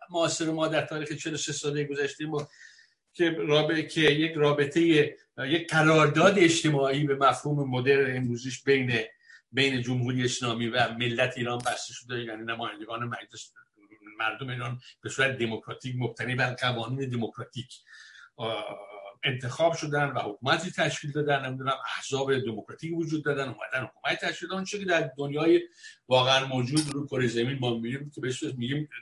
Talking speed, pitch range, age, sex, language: 145 wpm, 125-165 Hz, 60-79, male, Persian